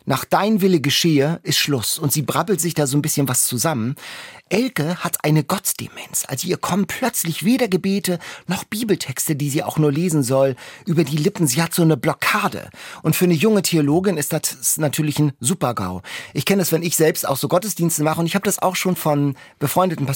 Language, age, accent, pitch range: German, 40-59, German, 140-185 Hz